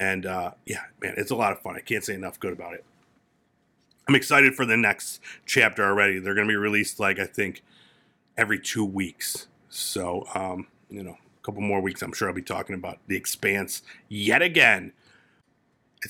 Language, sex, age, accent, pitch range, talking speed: English, male, 40-59, American, 95-140 Hz, 200 wpm